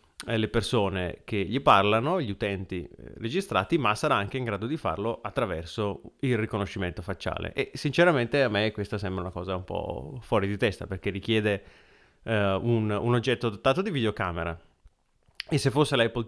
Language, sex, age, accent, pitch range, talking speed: Italian, male, 30-49, native, 100-120 Hz, 165 wpm